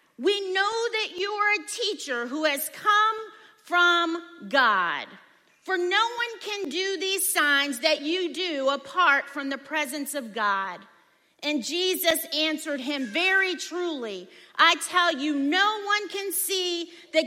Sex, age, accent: female, 40-59, American